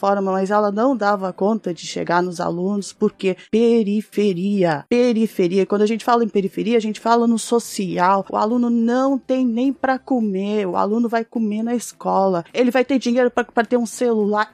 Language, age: Portuguese, 20-39